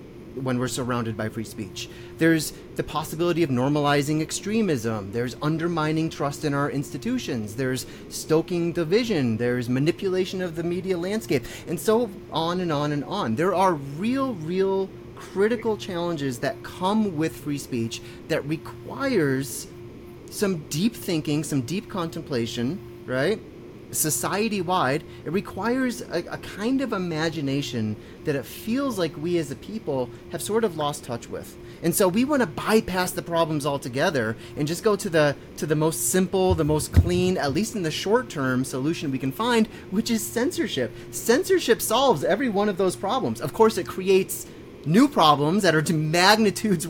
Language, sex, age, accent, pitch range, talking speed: English, male, 30-49, American, 135-195 Hz, 160 wpm